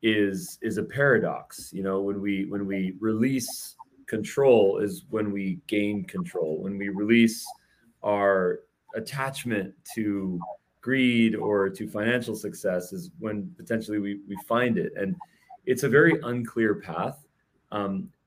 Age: 30-49